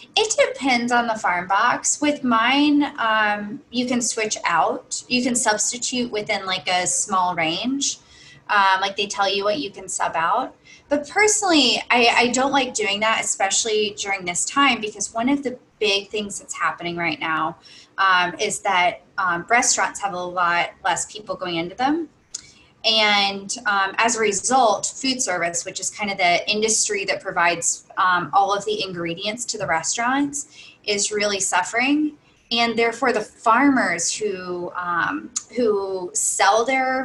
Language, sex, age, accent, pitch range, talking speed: English, female, 20-39, American, 190-245 Hz, 165 wpm